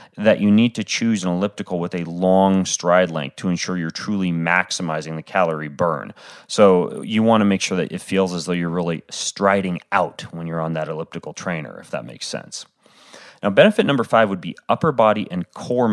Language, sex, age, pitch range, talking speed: English, male, 30-49, 85-105 Hz, 205 wpm